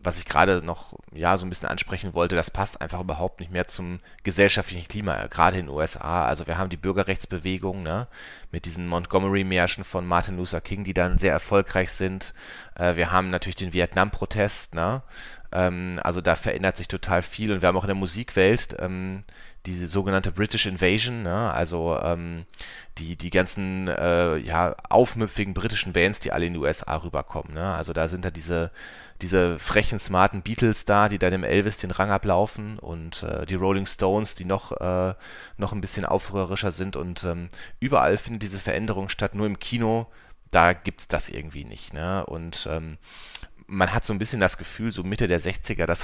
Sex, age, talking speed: male, 30-49, 190 wpm